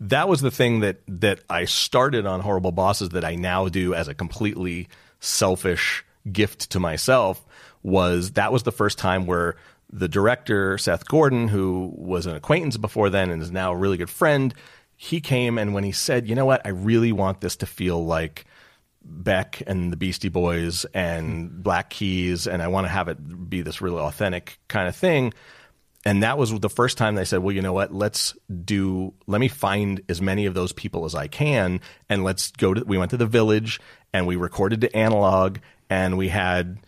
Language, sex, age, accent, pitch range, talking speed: English, male, 30-49, American, 90-105 Hz, 205 wpm